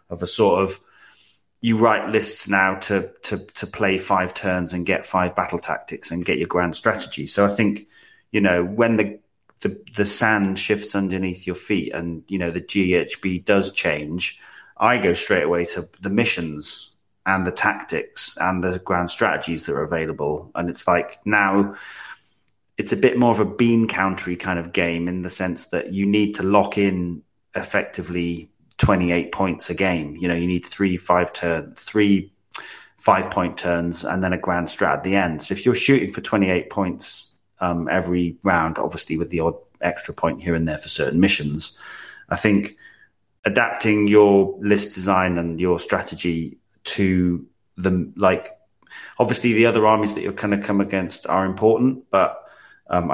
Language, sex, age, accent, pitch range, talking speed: English, male, 30-49, British, 85-100 Hz, 180 wpm